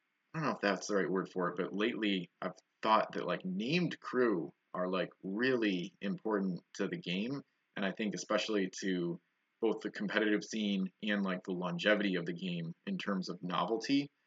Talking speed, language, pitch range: 190 wpm, English, 90-105 Hz